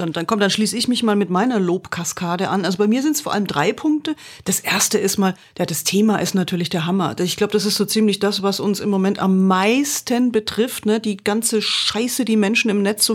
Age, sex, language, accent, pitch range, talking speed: 40-59, female, German, German, 195-230 Hz, 250 wpm